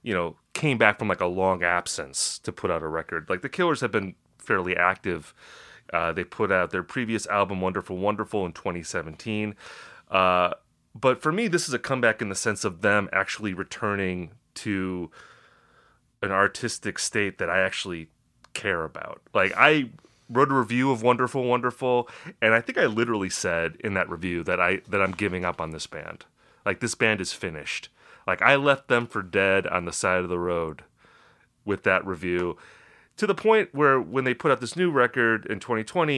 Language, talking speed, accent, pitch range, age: English, 190 wpm, American, 95-130 Hz, 30-49